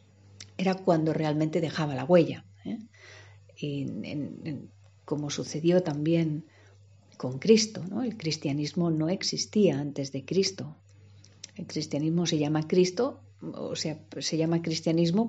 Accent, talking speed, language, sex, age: Spanish, 110 wpm, Spanish, female, 50-69